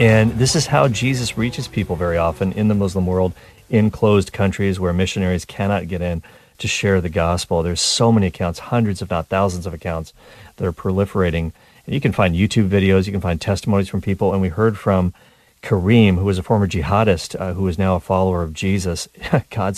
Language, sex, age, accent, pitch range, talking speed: English, male, 40-59, American, 90-110 Hz, 210 wpm